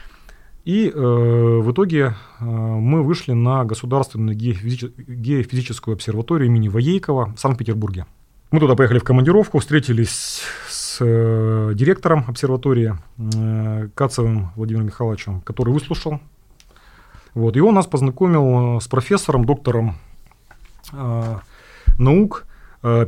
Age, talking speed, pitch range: 30-49, 105 wpm, 110-135 Hz